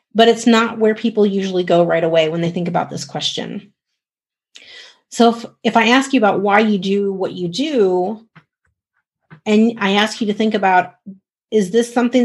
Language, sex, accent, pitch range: English, female, American, 180-225 Hz